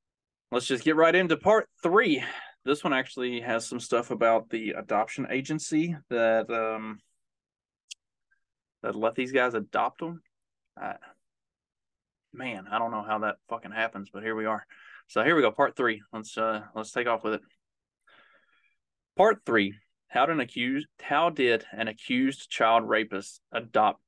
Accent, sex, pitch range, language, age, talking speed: American, male, 110-130 Hz, English, 20-39, 160 wpm